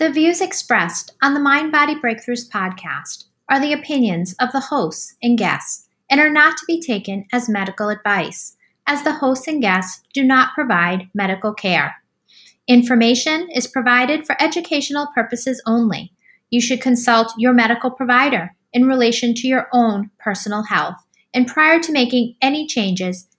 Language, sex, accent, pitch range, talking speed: English, female, American, 205-280 Hz, 160 wpm